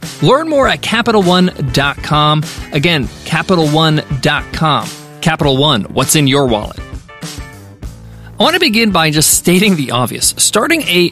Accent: American